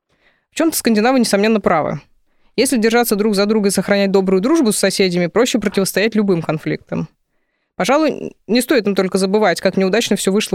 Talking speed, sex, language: 170 wpm, female, Russian